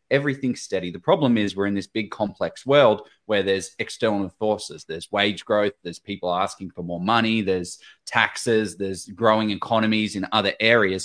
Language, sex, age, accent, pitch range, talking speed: English, male, 20-39, Australian, 100-130 Hz, 175 wpm